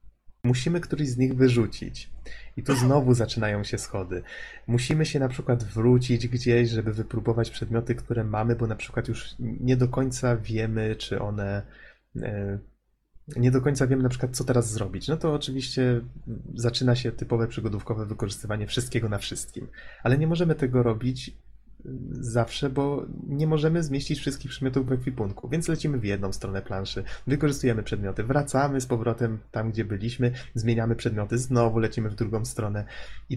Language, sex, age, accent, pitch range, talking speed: Polish, male, 20-39, native, 110-130 Hz, 160 wpm